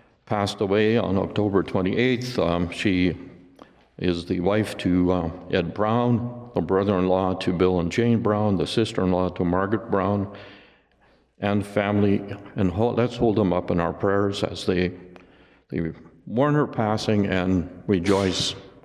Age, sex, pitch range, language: 50-69, male, 90-120 Hz, English